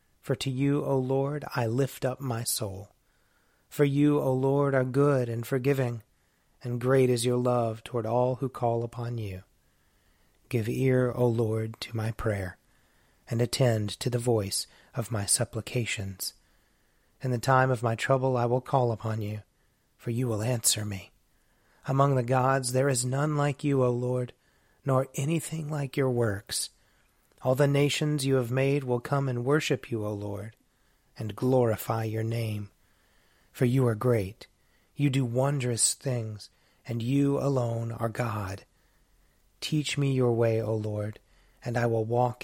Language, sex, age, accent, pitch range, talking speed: English, male, 30-49, American, 110-130 Hz, 165 wpm